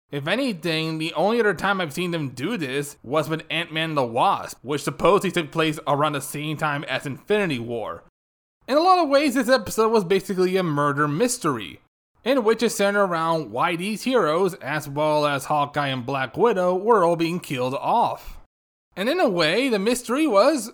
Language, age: English, 20-39